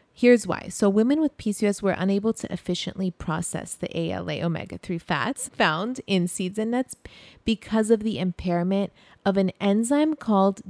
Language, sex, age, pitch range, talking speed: English, female, 30-49, 175-215 Hz, 155 wpm